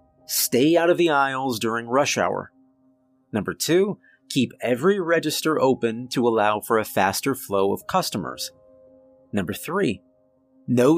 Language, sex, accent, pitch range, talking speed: English, male, American, 110-145 Hz, 135 wpm